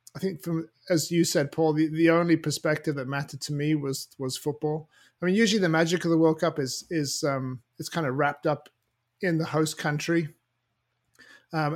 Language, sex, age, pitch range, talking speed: English, male, 30-49, 135-160 Hz, 205 wpm